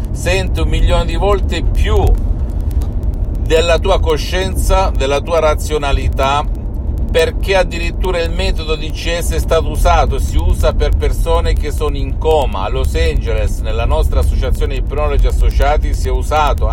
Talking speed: 145 wpm